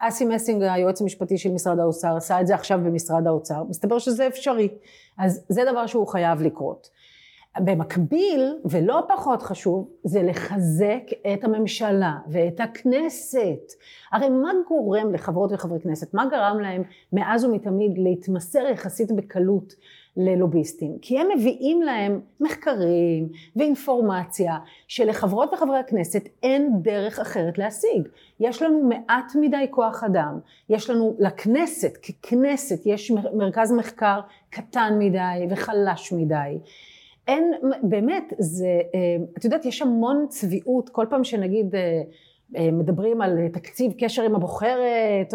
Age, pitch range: 40-59, 185-245 Hz